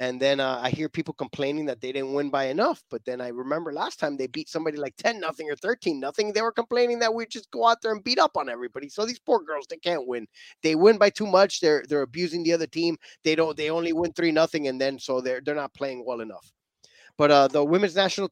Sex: male